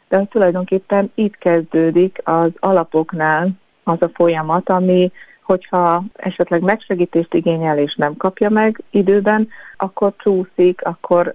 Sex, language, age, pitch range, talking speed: female, Hungarian, 30-49, 165-190 Hz, 115 wpm